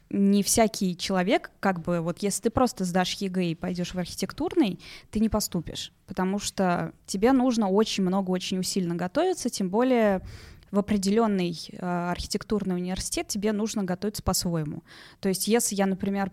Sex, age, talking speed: female, 20-39, 155 wpm